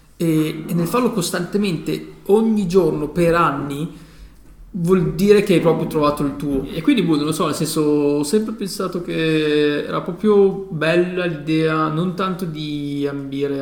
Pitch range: 145-185 Hz